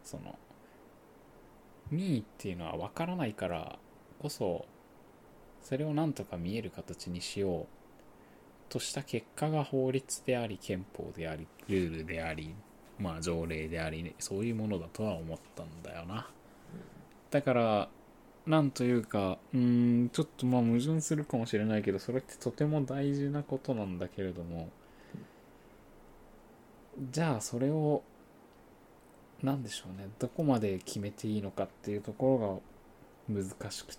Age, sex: 20-39, male